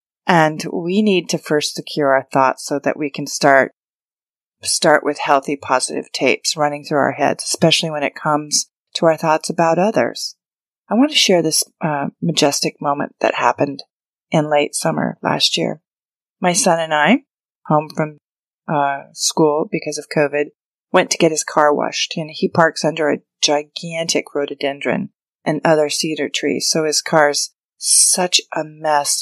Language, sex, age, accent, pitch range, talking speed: English, female, 30-49, American, 150-180 Hz, 165 wpm